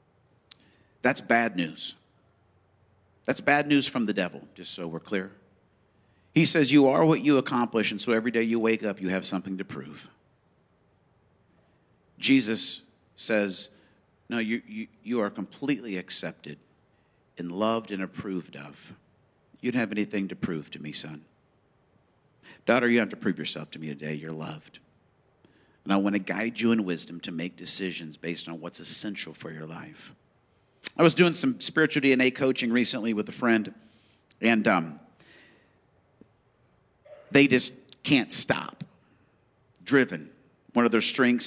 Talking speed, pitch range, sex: 155 wpm, 95-125 Hz, male